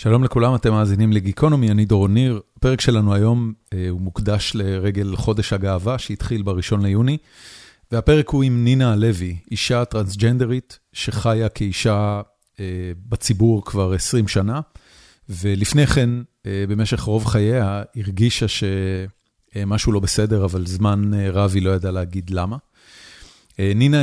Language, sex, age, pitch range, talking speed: Hebrew, male, 30-49, 100-120 Hz, 125 wpm